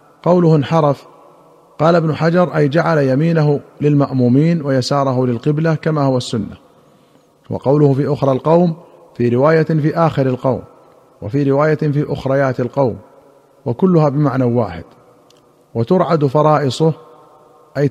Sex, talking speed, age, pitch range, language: male, 115 wpm, 50-69, 130-155 Hz, Arabic